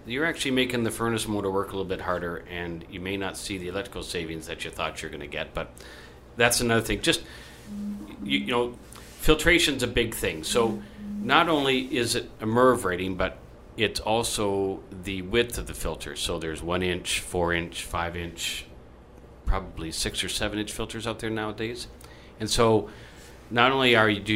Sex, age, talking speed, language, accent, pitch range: male, 40-59, 185 wpm, English, American, 85-110 Hz